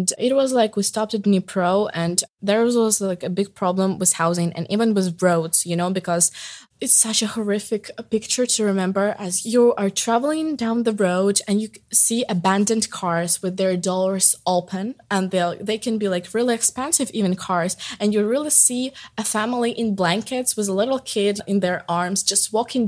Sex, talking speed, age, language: female, 190 wpm, 20-39, English